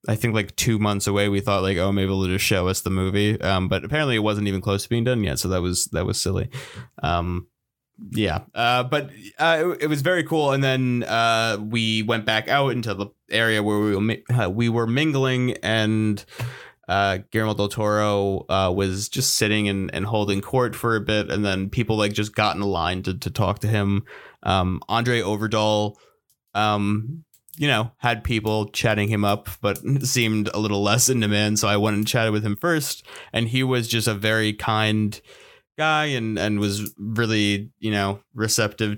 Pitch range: 100-120 Hz